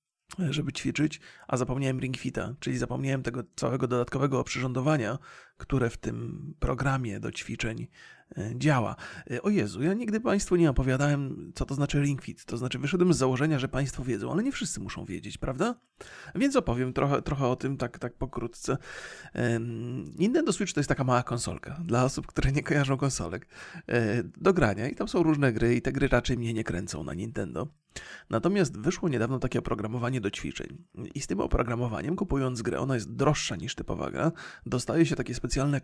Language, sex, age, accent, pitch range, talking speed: Polish, male, 30-49, native, 120-145 Hz, 175 wpm